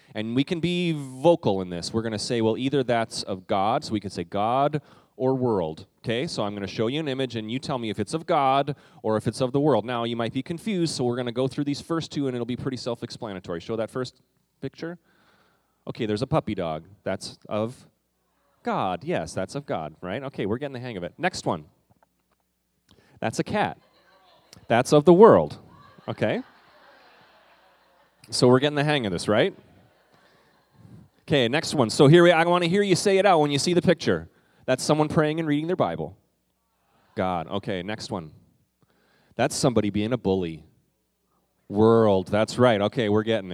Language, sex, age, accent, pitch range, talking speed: English, male, 30-49, American, 100-145 Hz, 205 wpm